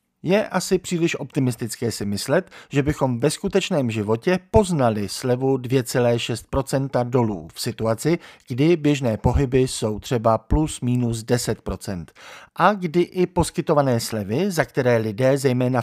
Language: Czech